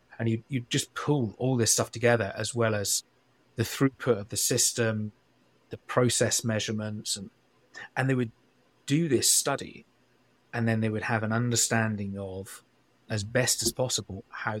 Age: 30-49